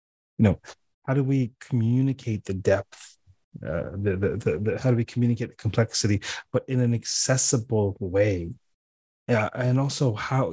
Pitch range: 100-125 Hz